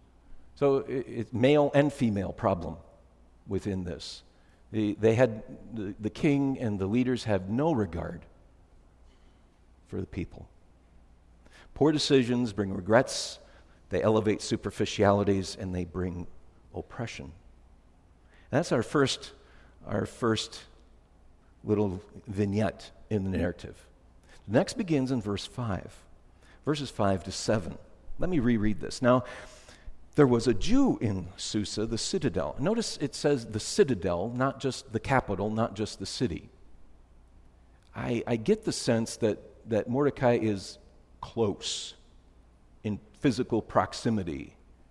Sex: male